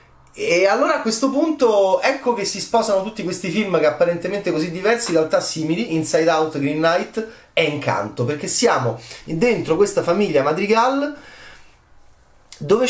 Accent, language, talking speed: native, Italian, 150 wpm